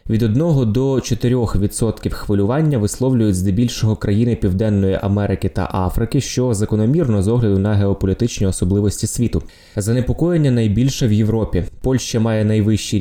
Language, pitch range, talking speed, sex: Ukrainian, 100-120 Hz, 130 wpm, male